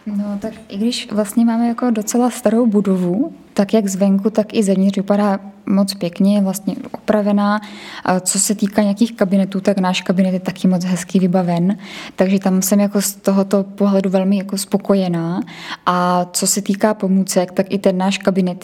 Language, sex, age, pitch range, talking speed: Czech, female, 10-29, 190-210 Hz, 180 wpm